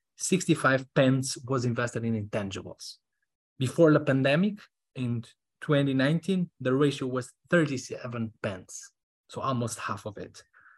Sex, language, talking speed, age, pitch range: male, English, 115 wpm, 20-39, 120-150 Hz